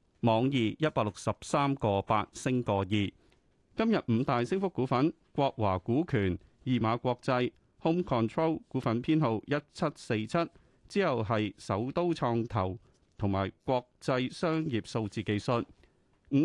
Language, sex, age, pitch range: Chinese, male, 30-49, 105-145 Hz